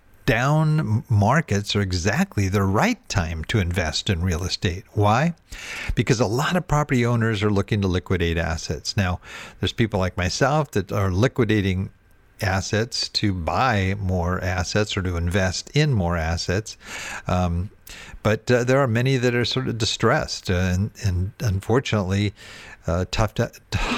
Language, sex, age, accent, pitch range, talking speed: English, male, 50-69, American, 90-115 Hz, 150 wpm